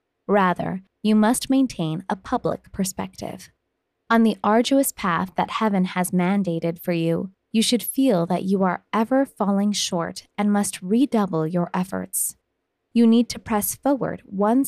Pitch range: 180-225 Hz